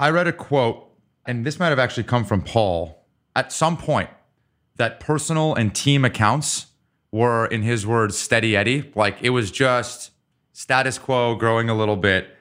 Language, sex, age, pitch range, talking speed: English, male, 30-49, 110-160 Hz, 175 wpm